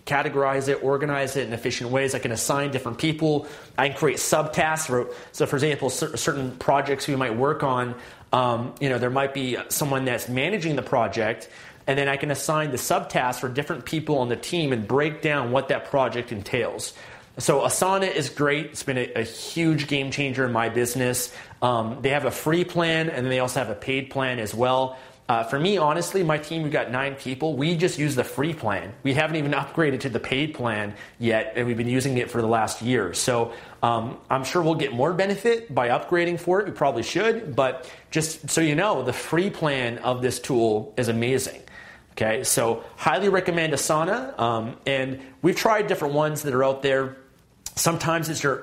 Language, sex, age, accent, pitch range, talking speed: English, male, 30-49, American, 125-155 Hz, 205 wpm